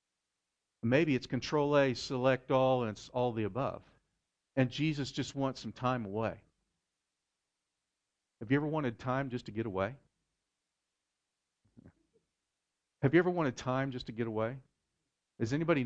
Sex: male